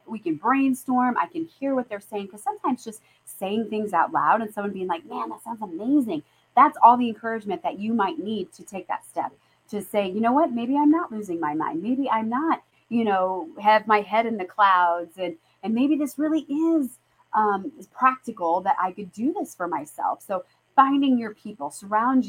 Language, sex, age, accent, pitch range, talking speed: English, female, 30-49, American, 185-250 Hz, 215 wpm